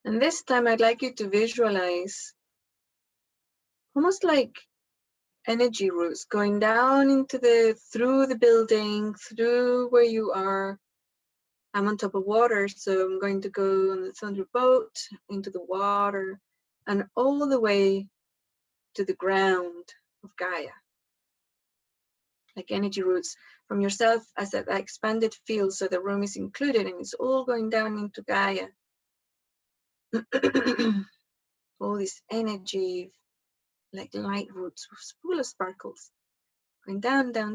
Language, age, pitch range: English, 30-49, 195-240 Hz